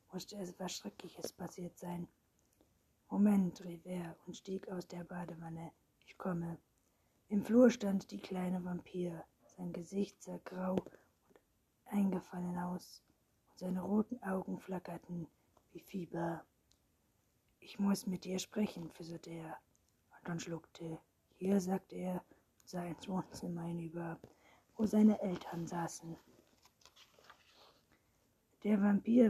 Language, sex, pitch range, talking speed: German, female, 170-195 Hz, 120 wpm